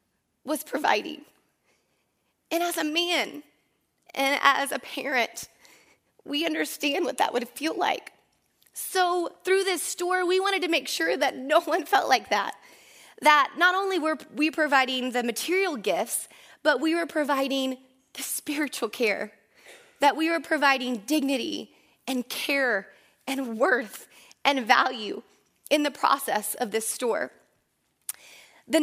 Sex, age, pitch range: female, 20-39, 240-310 Hz